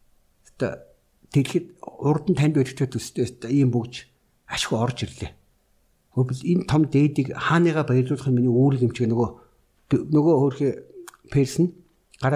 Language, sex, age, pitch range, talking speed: English, male, 60-79, 120-150 Hz, 125 wpm